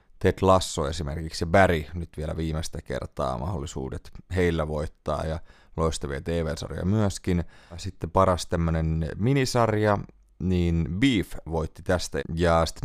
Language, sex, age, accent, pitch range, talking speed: Finnish, male, 30-49, native, 80-95 Hz, 120 wpm